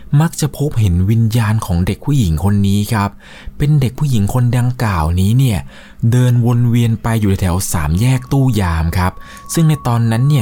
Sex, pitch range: male, 90-125 Hz